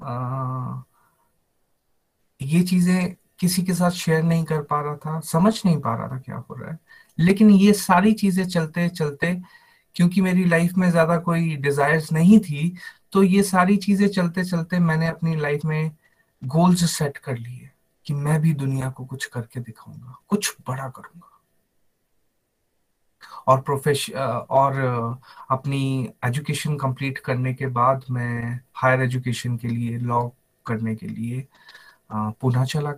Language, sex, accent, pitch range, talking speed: Hindi, male, native, 135-185 Hz, 150 wpm